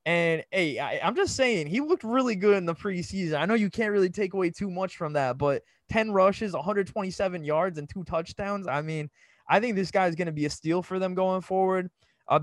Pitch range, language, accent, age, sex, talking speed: 155-185 Hz, English, American, 20-39, male, 235 wpm